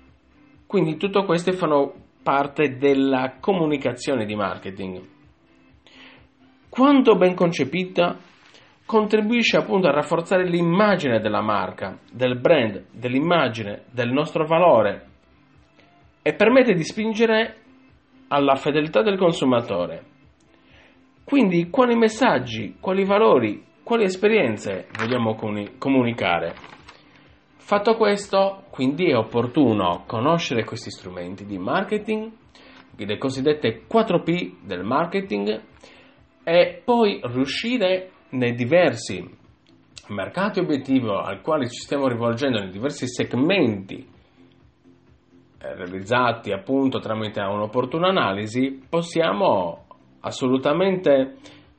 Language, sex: Italian, male